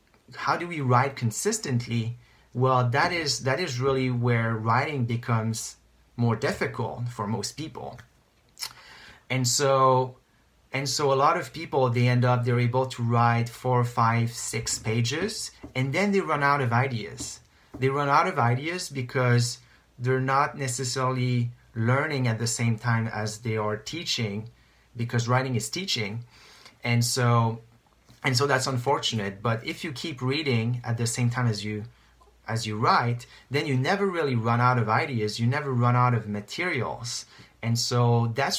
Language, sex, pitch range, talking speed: English, male, 115-135 Hz, 160 wpm